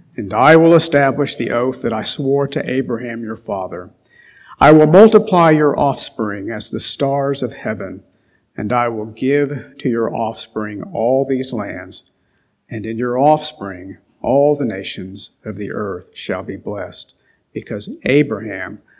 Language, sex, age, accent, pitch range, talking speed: English, male, 50-69, American, 110-145 Hz, 150 wpm